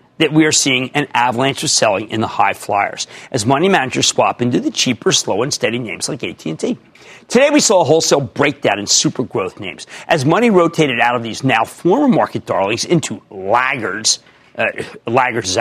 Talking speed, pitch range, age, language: 190 wpm, 145-240 Hz, 40-59, English